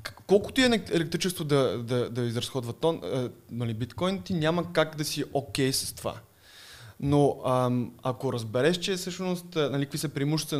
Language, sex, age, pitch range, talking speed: Bulgarian, male, 20-39, 125-155 Hz, 160 wpm